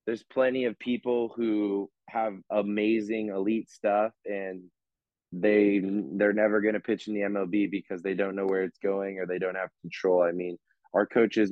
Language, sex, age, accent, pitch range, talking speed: English, male, 20-39, American, 95-110 Hz, 190 wpm